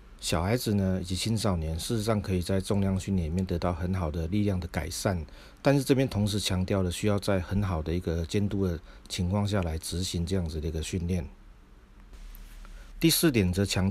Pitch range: 85-105 Hz